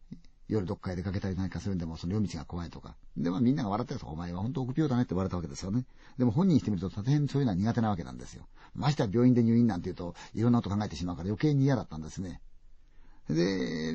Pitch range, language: 85-120 Hz, Chinese